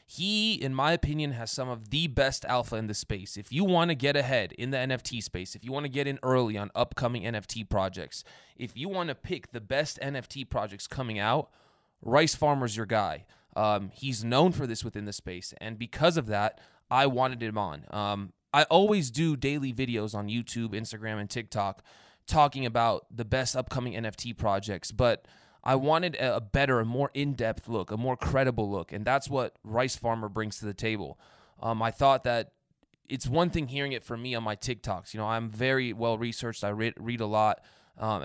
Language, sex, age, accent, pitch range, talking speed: English, male, 20-39, American, 105-135 Hz, 200 wpm